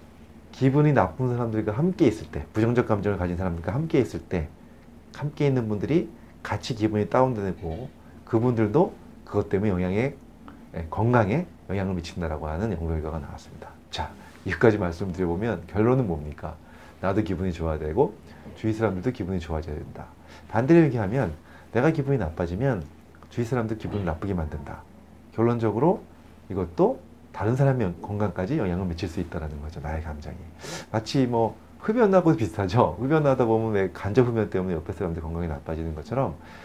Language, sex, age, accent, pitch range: Korean, male, 40-59, native, 80-115 Hz